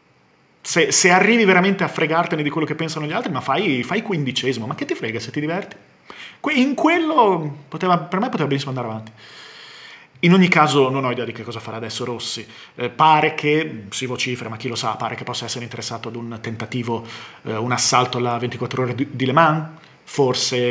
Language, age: Italian, 30-49